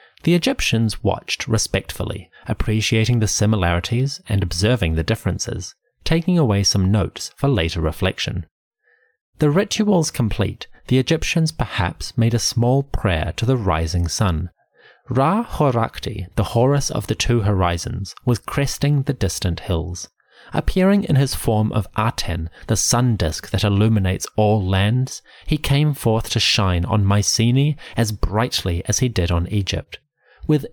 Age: 30-49